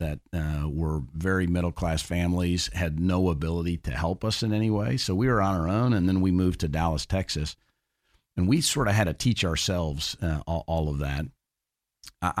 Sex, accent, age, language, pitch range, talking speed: male, American, 50-69, English, 85-105 Hz, 205 wpm